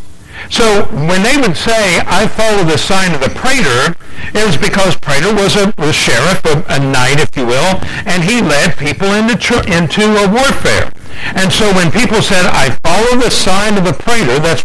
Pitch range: 160-220 Hz